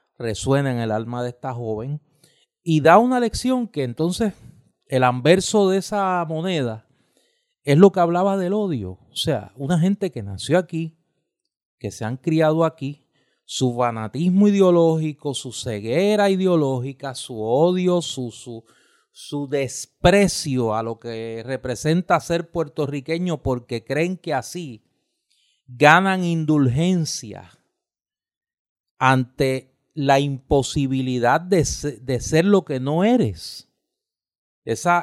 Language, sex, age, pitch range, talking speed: Spanish, male, 30-49, 130-185 Hz, 120 wpm